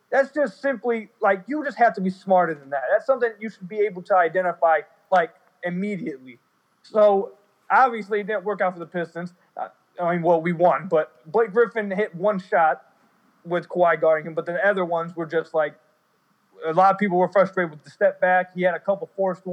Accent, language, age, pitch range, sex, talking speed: American, English, 20-39, 170-220 Hz, male, 210 wpm